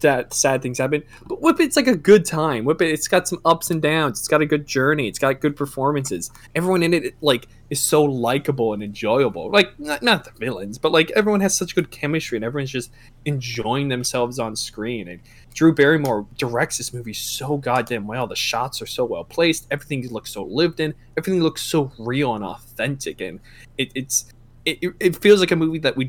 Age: 20-39